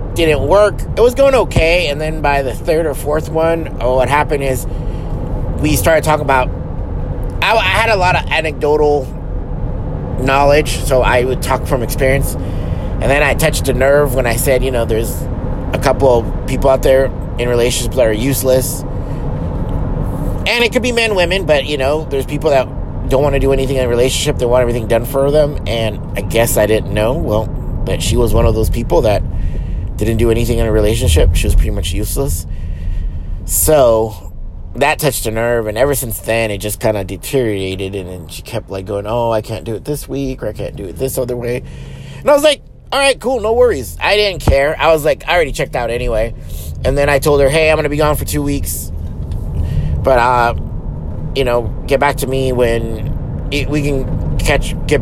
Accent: American